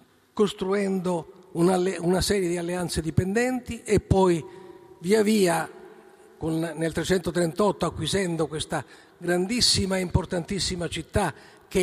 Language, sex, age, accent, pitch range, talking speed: Italian, male, 50-69, native, 155-210 Hz, 105 wpm